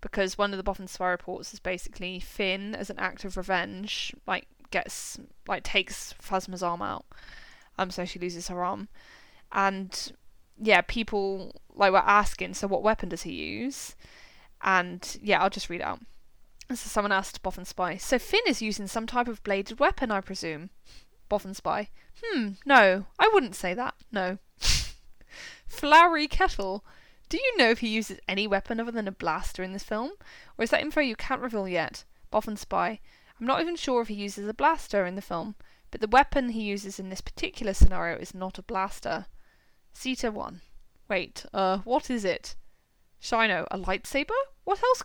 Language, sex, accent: English, female, British